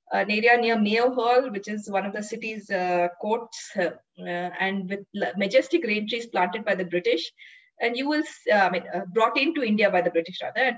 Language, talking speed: English, 225 wpm